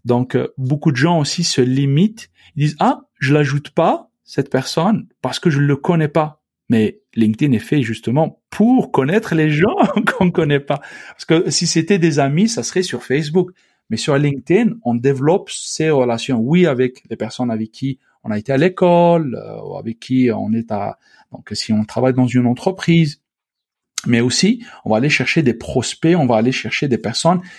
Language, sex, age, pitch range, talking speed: French, male, 40-59, 125-175 Hz, 200 wpm